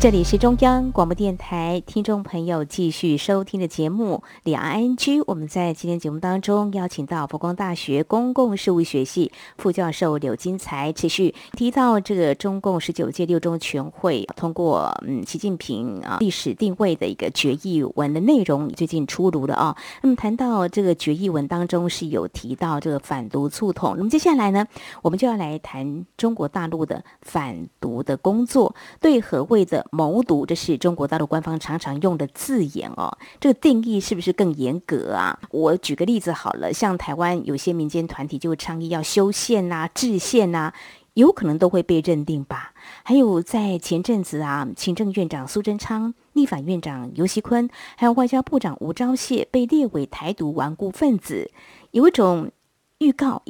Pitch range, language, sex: 160-230 Hz, Chinese, female